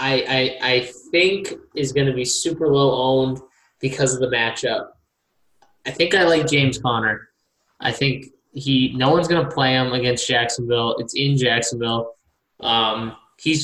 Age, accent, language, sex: 20-39, American, English, male